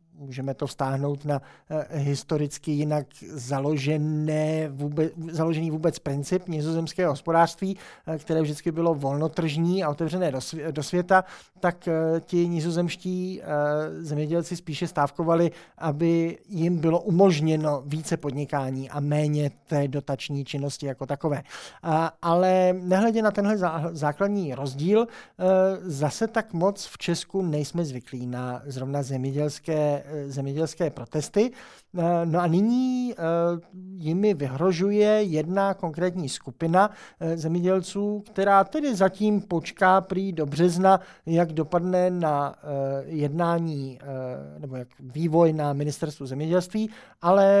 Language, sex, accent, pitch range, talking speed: Czech, male, native, 150-180 Hz, 105 wpm